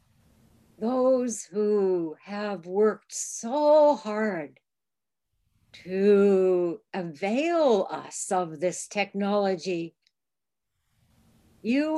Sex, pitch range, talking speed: female, 180-240 Hz, 65 wpm